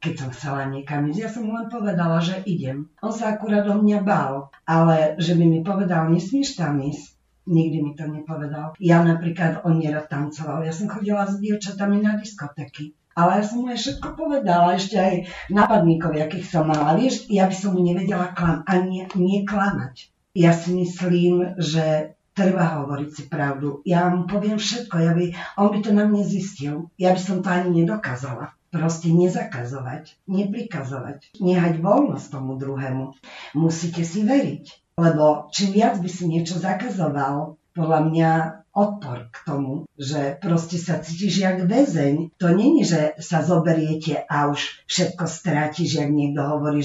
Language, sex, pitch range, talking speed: Slovak, female, 150-190 Hz, 165 wpm